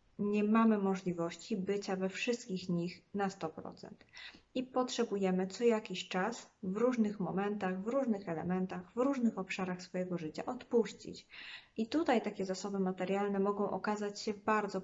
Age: 20-39